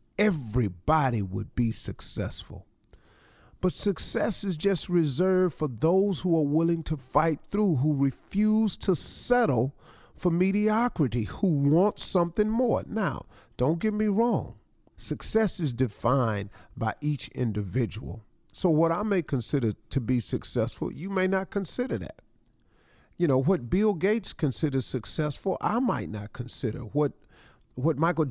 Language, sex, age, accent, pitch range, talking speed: English, male, 40-59, American, 125-190 Hz, 140 wpm